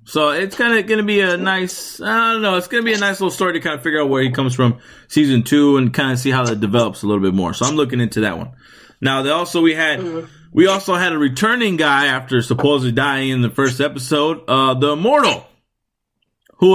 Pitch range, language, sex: 145-180 Hz, English, male